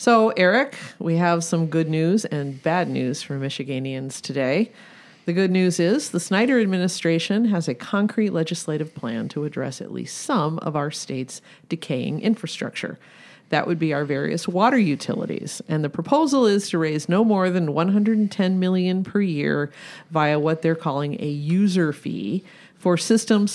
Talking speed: 165 wpm